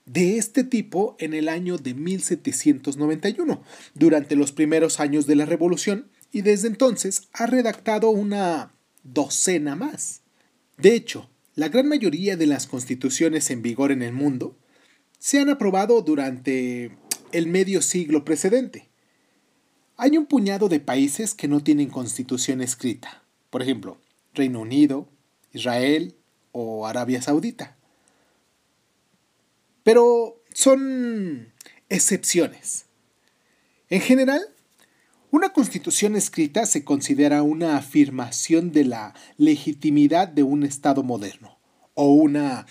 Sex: male